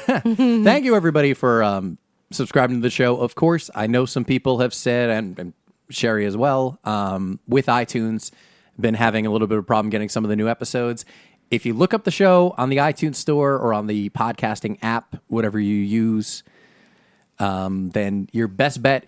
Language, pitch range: English, 105-160 Hz